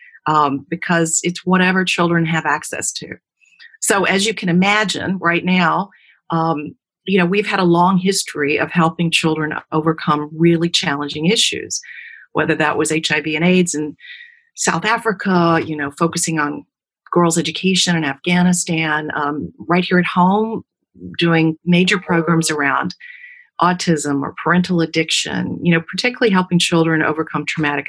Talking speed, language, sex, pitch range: 140 wpm, English, female, 155-185 Hz